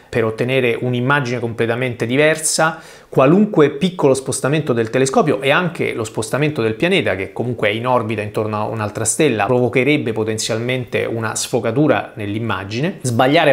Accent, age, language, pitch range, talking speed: native, 30-49, Italian, 110-135 Hz, 135 wpm